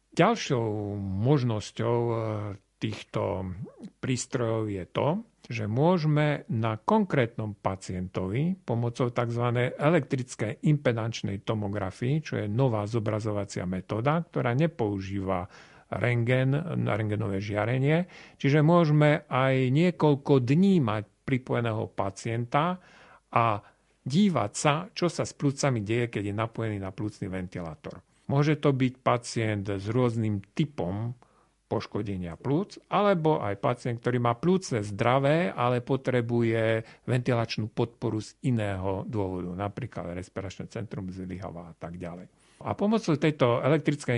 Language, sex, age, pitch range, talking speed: Slovak, male, 50-69, 105-145 Hz, 110 wpm